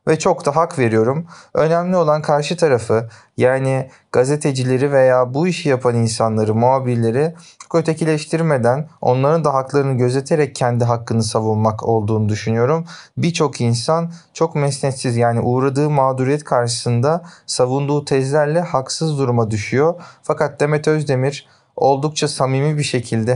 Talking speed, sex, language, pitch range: 120 wpm, male, Turkish, 120-150 Hz